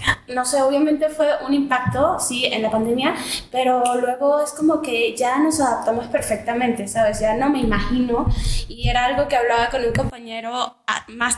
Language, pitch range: Spanish, 225-250 Hz